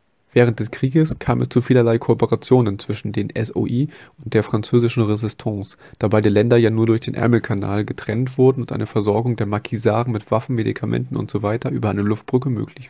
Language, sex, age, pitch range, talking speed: German, male, 20-39, 105-125 Hz, 180 wpm